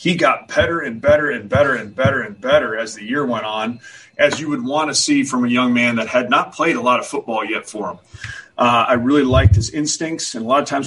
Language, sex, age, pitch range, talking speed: English, male, 30-49, 120-135 Hz, 265 wpm